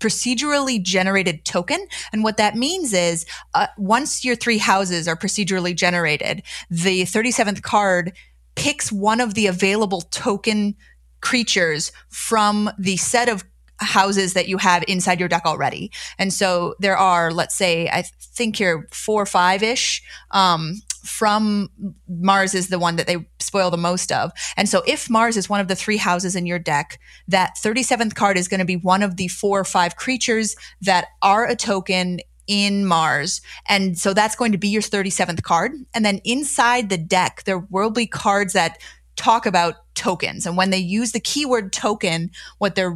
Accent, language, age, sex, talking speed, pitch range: American, English, 20-39, female, 175 wpm, 180-215 Hz